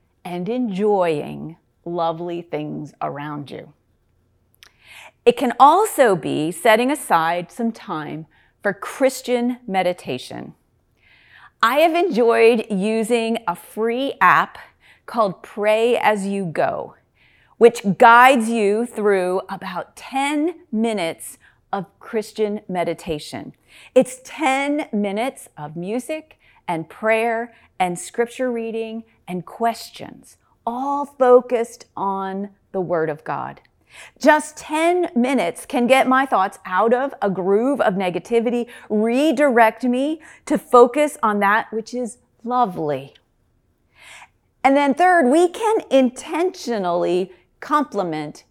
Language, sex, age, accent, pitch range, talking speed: English, female, 40-59, American, 185-260 Hz, 110 wpm